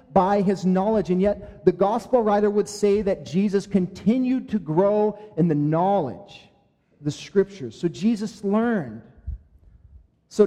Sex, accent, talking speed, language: male, American, 140 wpm, English